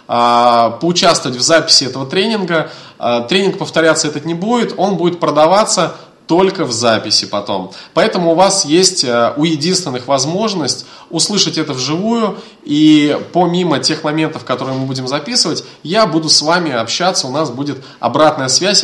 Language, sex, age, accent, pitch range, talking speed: Russian, male, 20-39, native, 130-175 Hz, 145 wpm